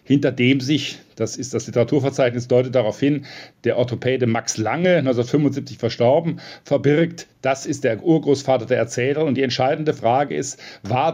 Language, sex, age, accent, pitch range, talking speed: German, male, 50-69, German, 120-140 Hz, 155 wpm